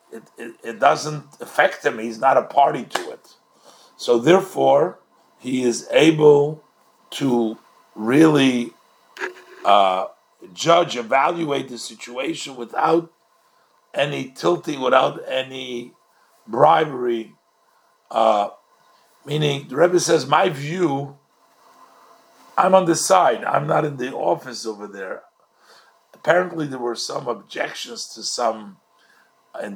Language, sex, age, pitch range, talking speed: English, male, 50-69, 120-175 Hz, 115 wpm